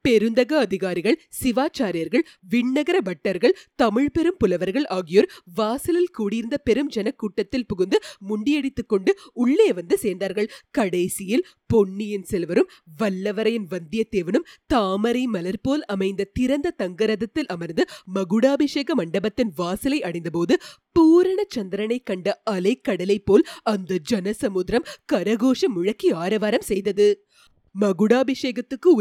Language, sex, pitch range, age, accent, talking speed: Tamil, female, 195-280 Hz, 30-49, native, 95 wpm